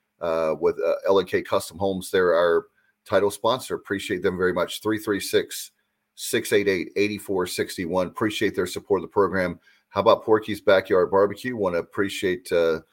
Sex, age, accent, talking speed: male, 40-59, American, 140 wpm